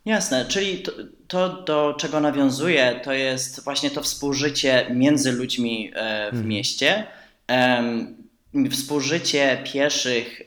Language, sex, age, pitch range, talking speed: Polish, male, 20-39, 120-140 Hz, 105 wpm